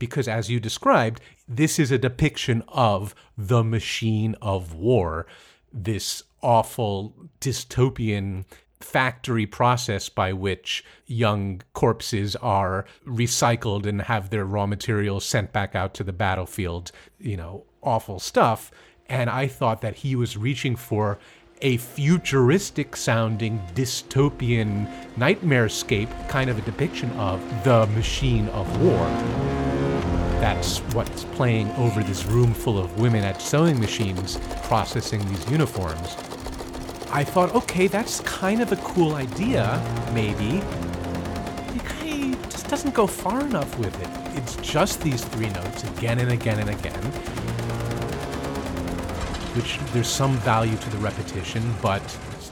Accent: American